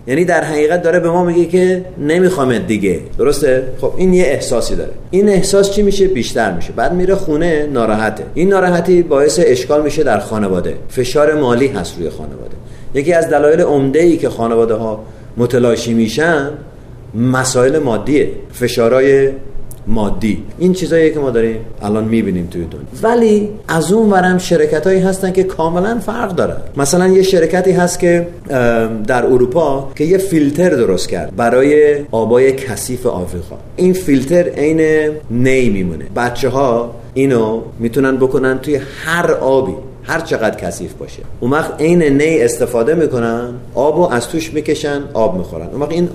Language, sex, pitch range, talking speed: Persian, male, 115-165 Hz, 155 wpm